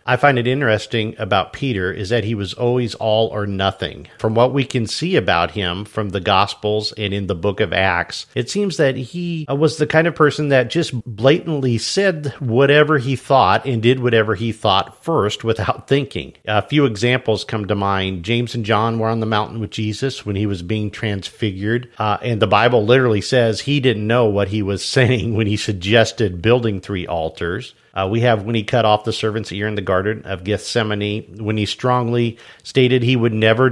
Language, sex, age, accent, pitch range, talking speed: English, male, 50-69, American, 105-135 Hz, 205 wpm